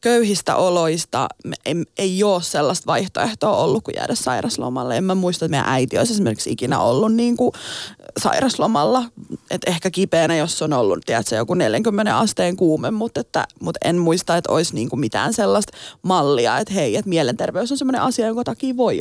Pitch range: 165-220 Hz